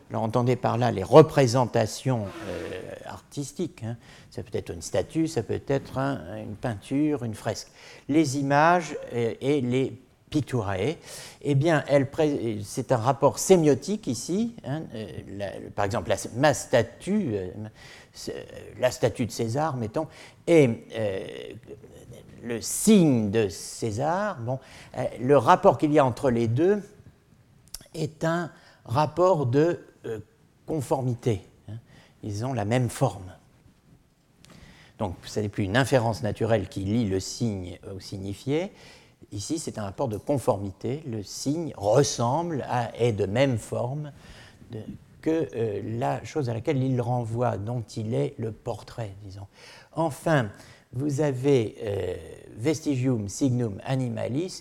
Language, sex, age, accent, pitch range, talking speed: French, male, 60-79, French, 115-145 Hz, 135 wpm